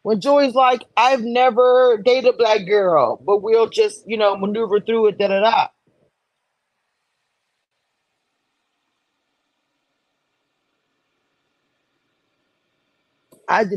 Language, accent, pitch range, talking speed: English, American, 155-225 Hz, 95 wpm